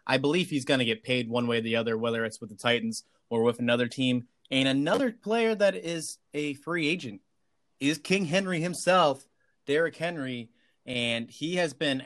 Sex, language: male, English